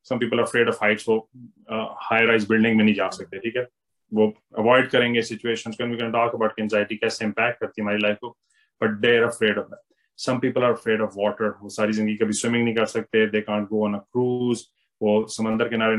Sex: male